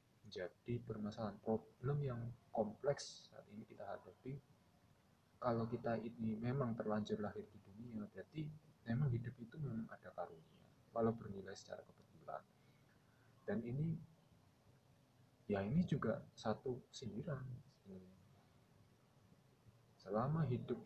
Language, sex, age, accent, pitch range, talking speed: Indonesian, male, 20-39, native, 105-150 Hz, 105 wpm